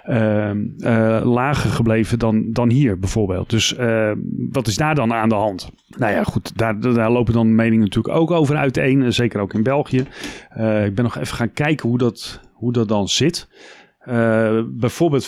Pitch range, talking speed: 110-135 Hz, 185 wpm